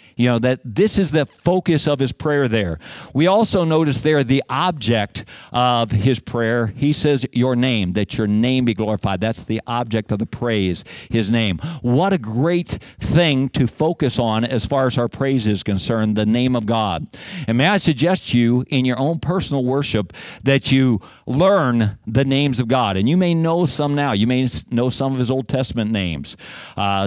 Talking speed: 195 wpm